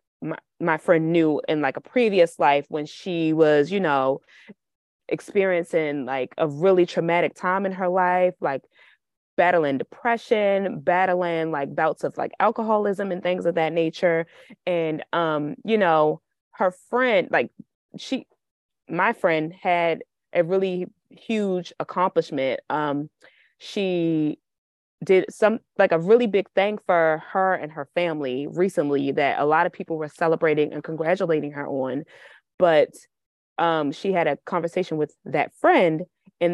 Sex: female